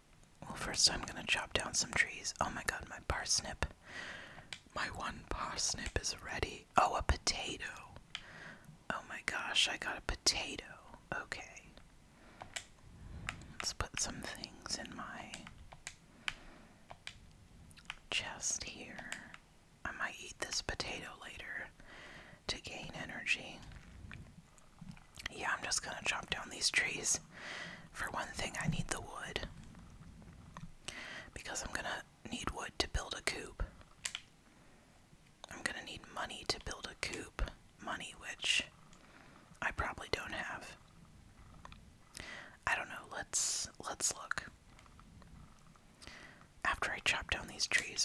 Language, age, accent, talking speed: English, 30-49, American, 120 wpm